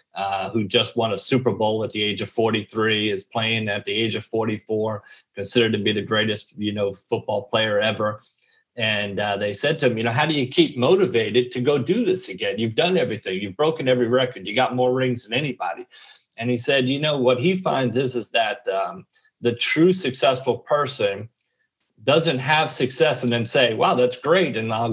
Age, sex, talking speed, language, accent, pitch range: 40-59, male, 210 wpm, English, American, 110-130 Hz